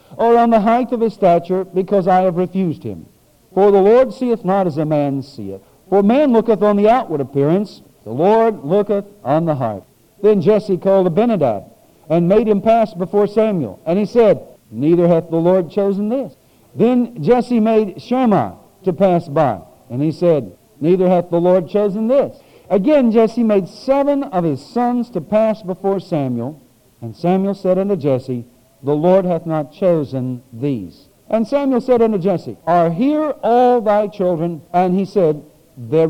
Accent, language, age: American, English, 60-79